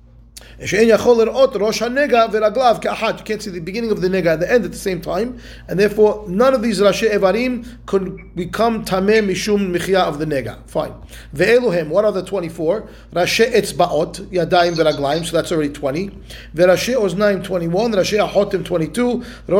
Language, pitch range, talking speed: English, 160-210 Hz, 155 wpm